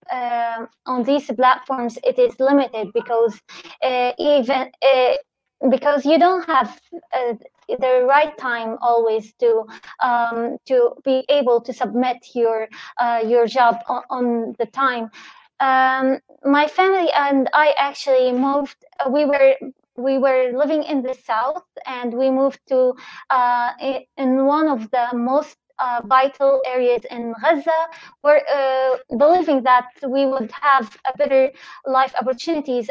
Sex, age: female, 20-39